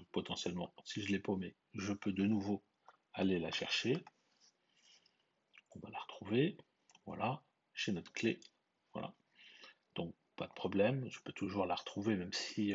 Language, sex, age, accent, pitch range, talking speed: French, male, 40-59, French, 95-120 Hz, 150 wpm